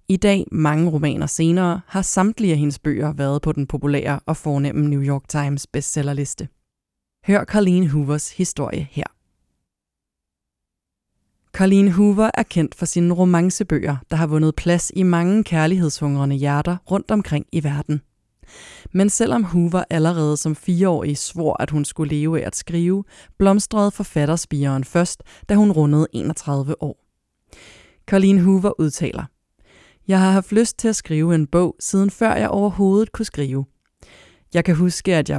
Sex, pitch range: female, 145-185 Hz